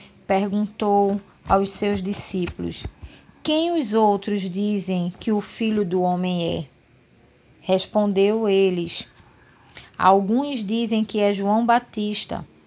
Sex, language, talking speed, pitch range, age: female, Portuguese, 105 wpm, 195-240 Hz, 20-39